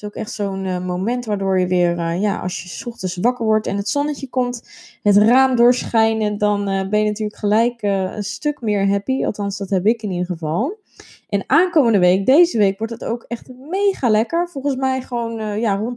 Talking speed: 210 wpm